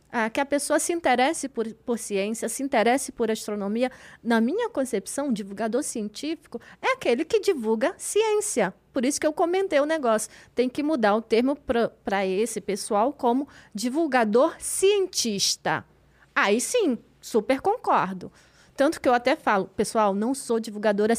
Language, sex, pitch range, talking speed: Portuguese, female, 220-295 Hz, 160 wpm